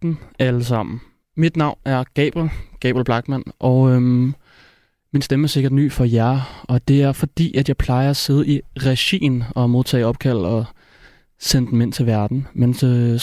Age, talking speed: 30-49, 175 wpm